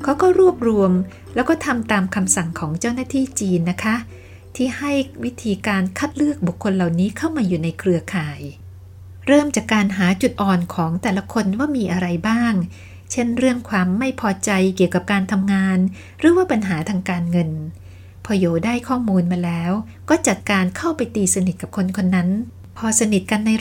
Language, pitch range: Thai, 180-240 Hz